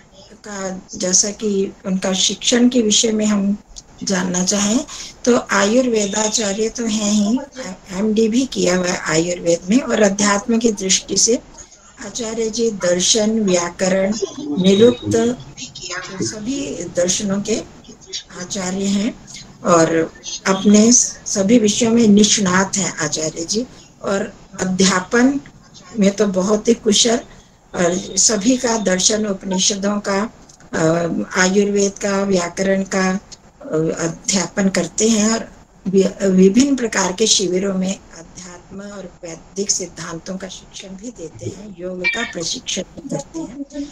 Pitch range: 185-220 Hz